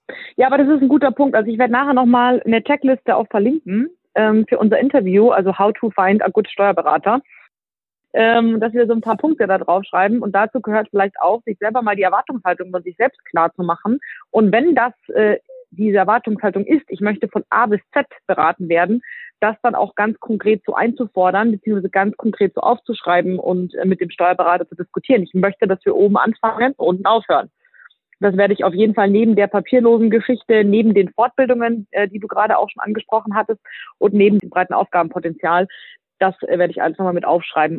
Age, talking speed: 30-49, 200 wpm